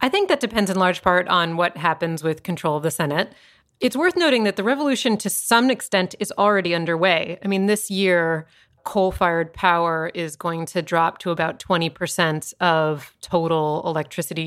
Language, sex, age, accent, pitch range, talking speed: English, female, 30-49, American, 160-190 Hz, 185 wpm